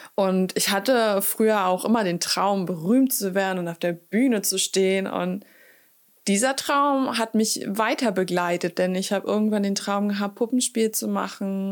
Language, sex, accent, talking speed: German, female, German, 175 wpm